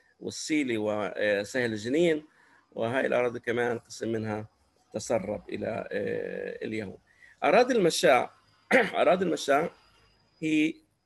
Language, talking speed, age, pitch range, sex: Arabic, 85 wpm, 50-69, 120-180 Hz, male